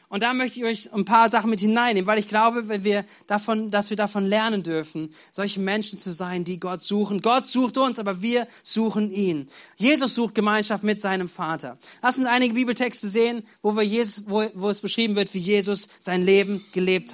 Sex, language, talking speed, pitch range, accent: male, German, 205 wpm, 185-230 Hz, German